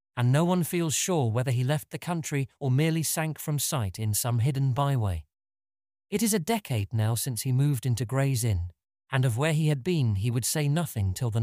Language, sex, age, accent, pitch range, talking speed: English, male, 40-59, British, 115-165 Hz, 220 wpm